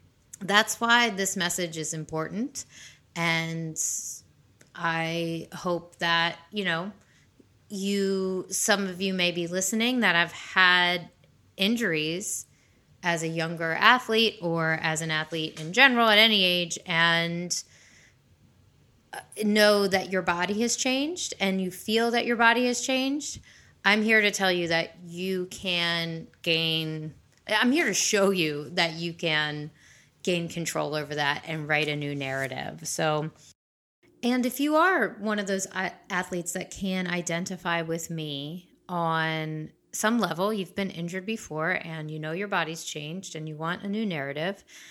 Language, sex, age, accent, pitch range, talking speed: English, female, 20-39, American, 165-210 Hz, 145 wpm